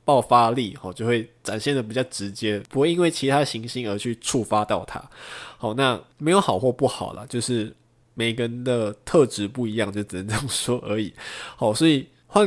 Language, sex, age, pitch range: Chinese, male, 20-39, 105-140 Hz